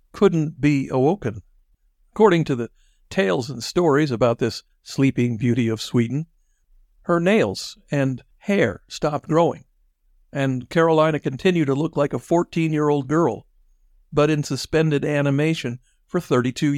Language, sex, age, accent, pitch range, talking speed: English, male, 50-69, American, 120-155 Hz, 130 wpm